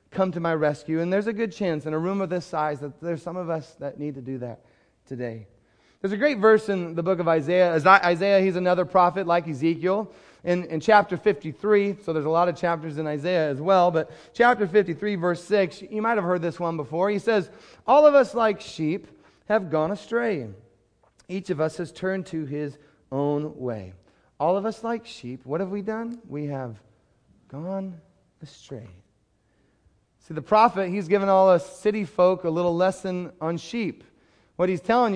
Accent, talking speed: American, 200 wpm